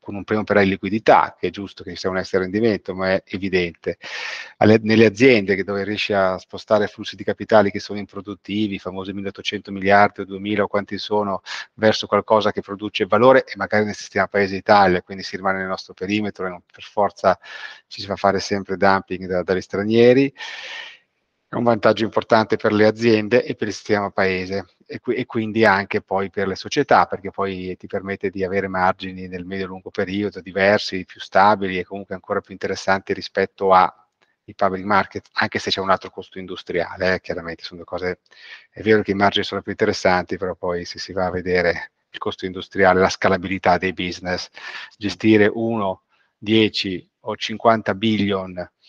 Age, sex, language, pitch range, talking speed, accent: 30-49, male, Italian, 95-105 Hz, 190 wpm, native